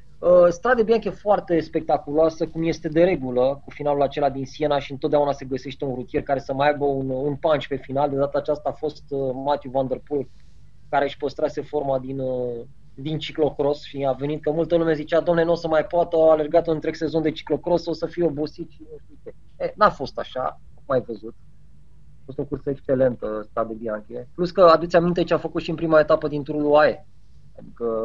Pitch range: 130-165 Hz